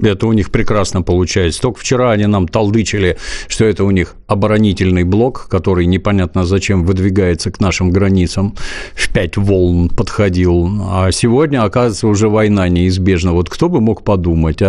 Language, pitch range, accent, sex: Russian, 90-110 Hz, native, male